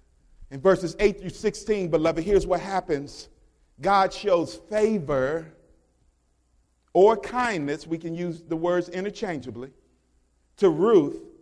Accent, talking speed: American, 115 wpm